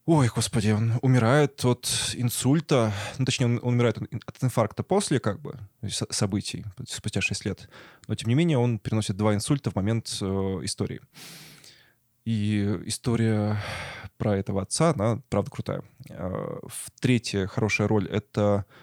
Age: 20-39